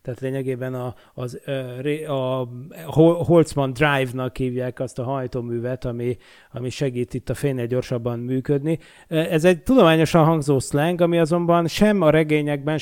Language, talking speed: Hungarian, 135 wpm